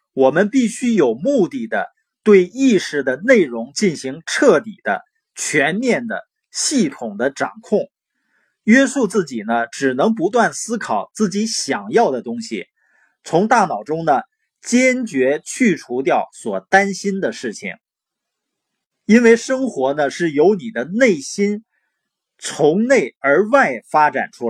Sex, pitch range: male, 150-250 Hz